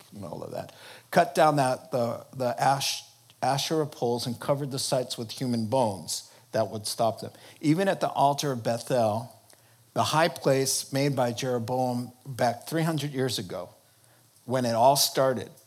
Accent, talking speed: American, 165 wpm